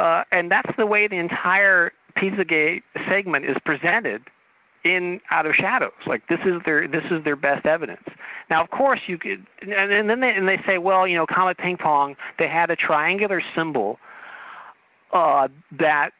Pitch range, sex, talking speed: 135-185 Hz, male, 180 wpm